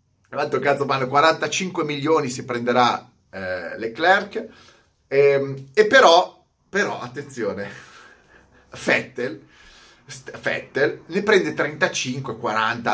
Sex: male